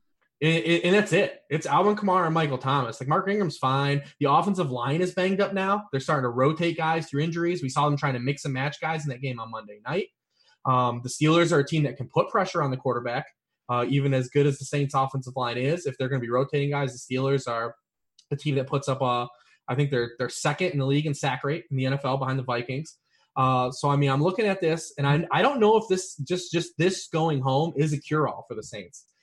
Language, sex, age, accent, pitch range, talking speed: English, male, 20-39, American, 130-160 Hz, 255 wpm